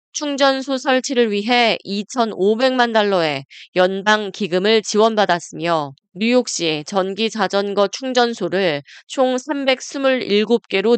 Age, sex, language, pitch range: 20-39, female, Korean, 180-240 Hz